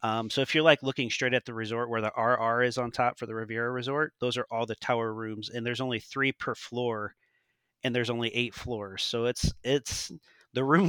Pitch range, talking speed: 115-135 Hz, 230 wpm